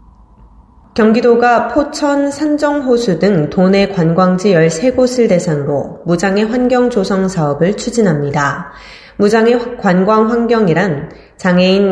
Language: Korean